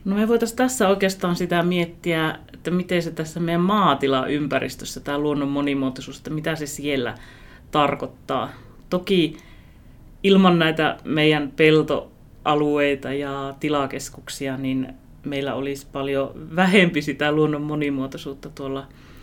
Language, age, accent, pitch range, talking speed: Finnish, 30-49, native, 140-165 Hz, 115 wpm